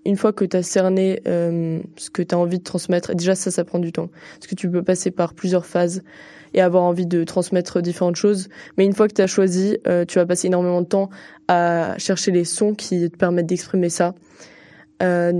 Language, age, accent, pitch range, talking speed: French, 20-39, French, 175-190 Hz, 220 wpm